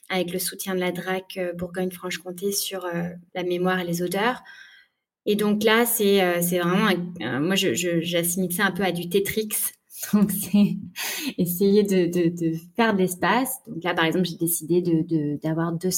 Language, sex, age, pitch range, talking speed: French, female, 20-39, 175-195 Hz, 190 wpm